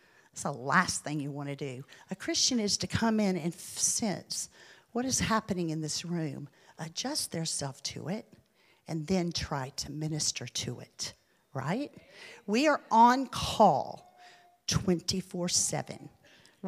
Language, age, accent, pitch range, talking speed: English, 50-69, American, 150-200 Hz, 145 wpm